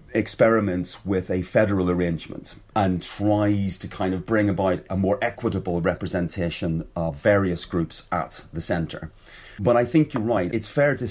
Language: English